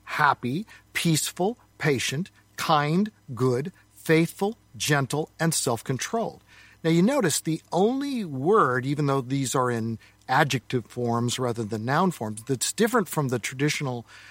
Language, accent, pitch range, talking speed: English, American, 130-185 Hz, 130 wpm